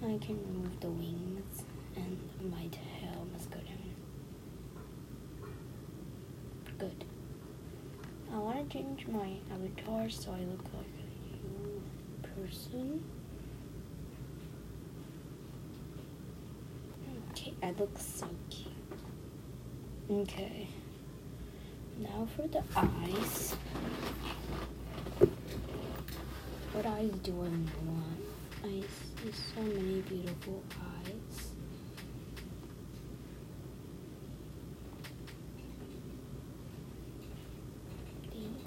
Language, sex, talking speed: English, female, 75 wpm